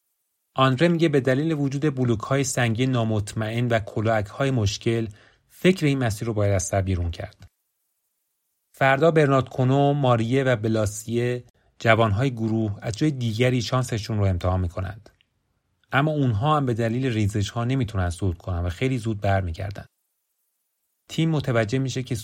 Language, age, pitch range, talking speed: Persian, 30-49, 100-130 Hz, 140 wpm